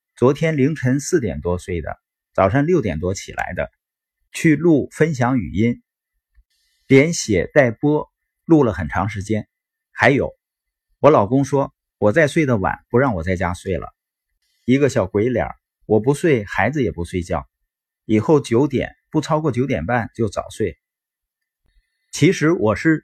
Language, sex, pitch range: Chinese, male, 105-145 Hz